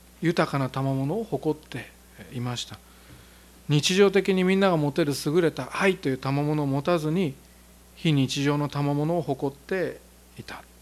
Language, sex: Japanese, male